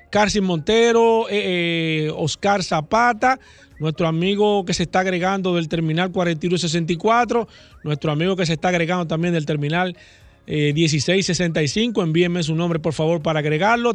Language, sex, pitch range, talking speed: Spanish, male, 160-210 Hz, 140 wpm